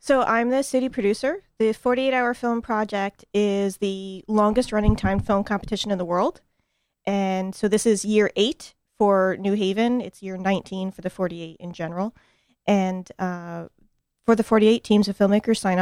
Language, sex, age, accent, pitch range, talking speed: English, female, 20-39, American, 185-215 Hz, 170 wpm